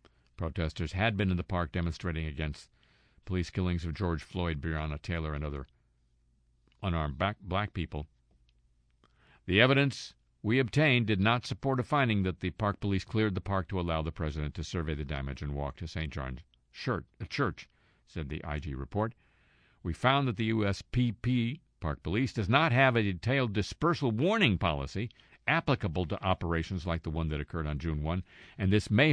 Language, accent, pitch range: English, American, 75-115 Hz